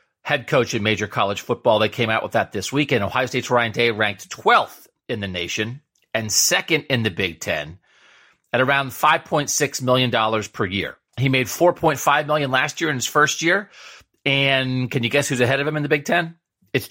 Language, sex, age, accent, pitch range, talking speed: English, male, 40-59, American, 110-145 Hz, 200 wpm